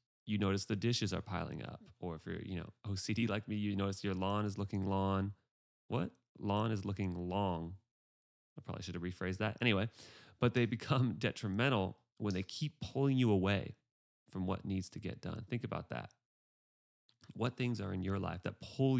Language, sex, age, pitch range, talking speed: English, male, 30-49, 95-115 Hz, 185 wpm